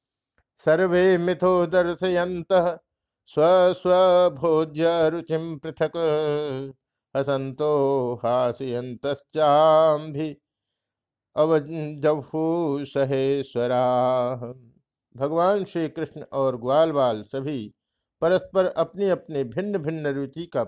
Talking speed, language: 45 wpm, Hindi